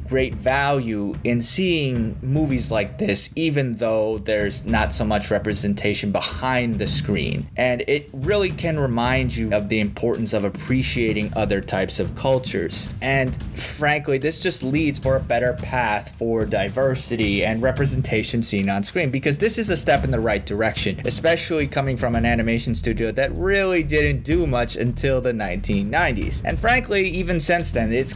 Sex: male